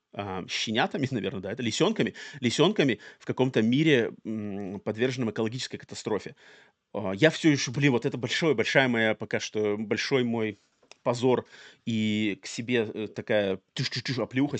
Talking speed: 125 wpm